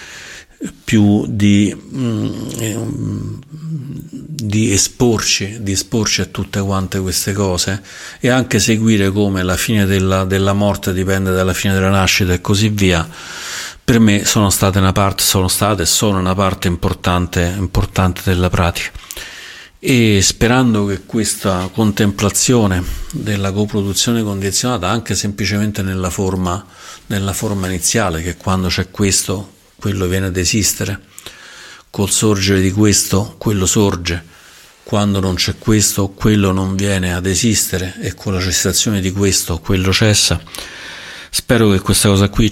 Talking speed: 125 wpm